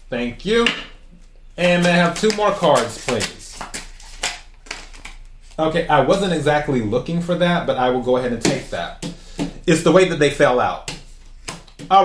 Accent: American